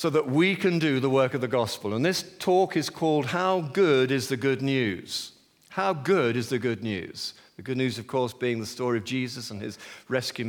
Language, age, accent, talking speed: English, 50-69, British, 230 wpm